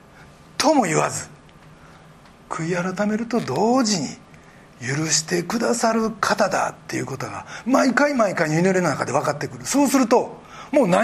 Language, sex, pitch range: Japanese, male, 165-240 Hz